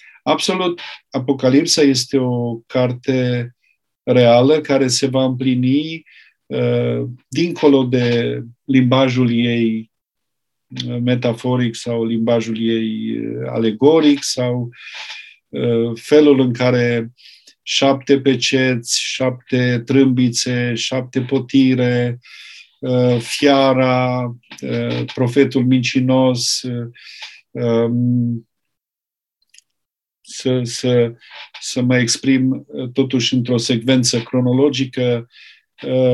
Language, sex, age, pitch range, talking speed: Romanian, male, 50-69, 120-130 Hz, 70 wpm